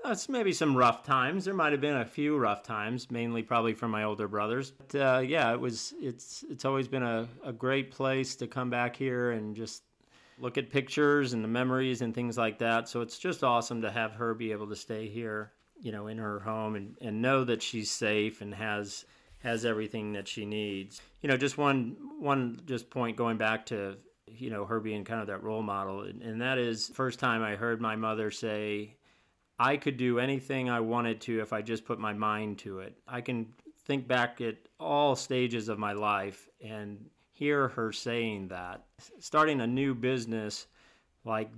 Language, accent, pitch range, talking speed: English, American, 110-130 Hz, 210 wpm